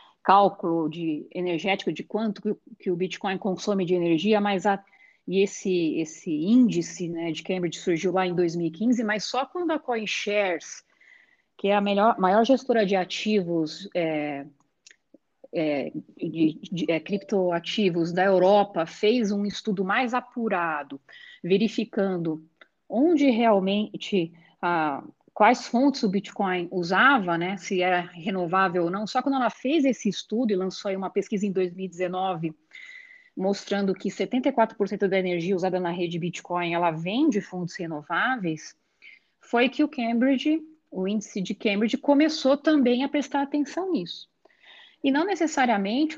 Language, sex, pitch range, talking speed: Portuguese, female, 175-235 Hz, 140 wpm